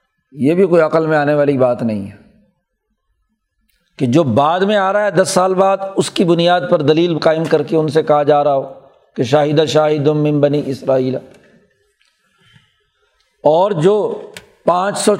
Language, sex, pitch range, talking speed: Urdu, male, 155-185 Hz, 175 wpm